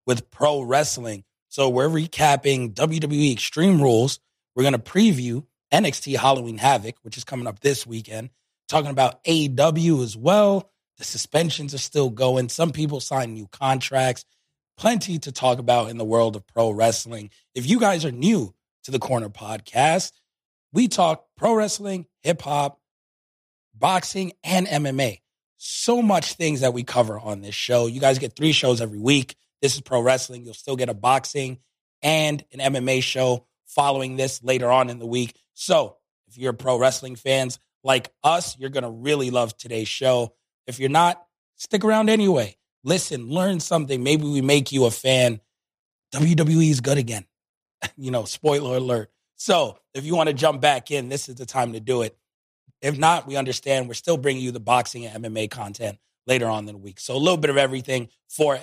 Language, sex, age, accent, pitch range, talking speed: English, male, 30-49, American, 120-150 Hz, 185 wpm